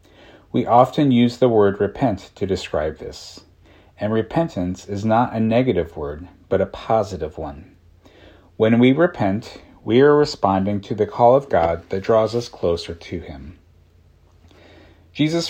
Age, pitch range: 40-59, 90-120 Hz